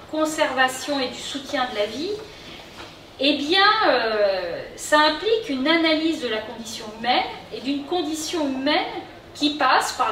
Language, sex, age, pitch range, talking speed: French, female, 40-59, 250-320 Hz, 150 wpm